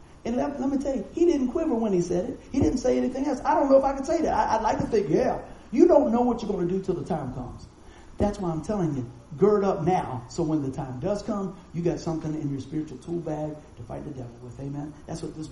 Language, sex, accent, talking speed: English, male, American, 290 wpm